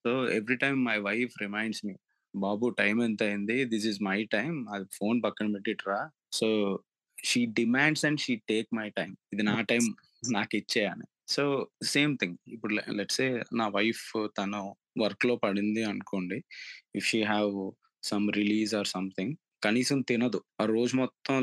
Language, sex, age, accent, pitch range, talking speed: Telugu, male, 20-39, native, 105-120 Hz, 155 wpm